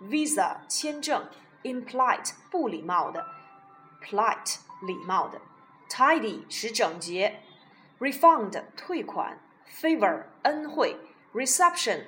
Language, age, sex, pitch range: Chinese, 30-49, female, 210-310 Hz